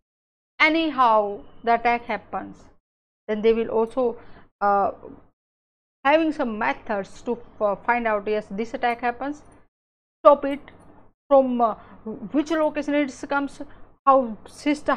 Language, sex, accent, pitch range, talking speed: English, female, Indian, 225-275 Hz, 120 wpm